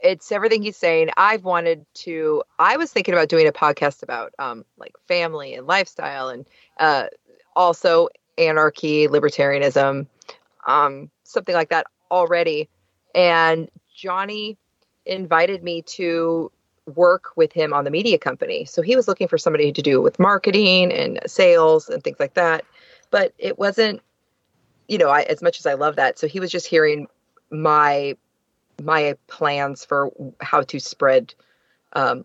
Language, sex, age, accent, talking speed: English, female, 30-49, American, 155 wpm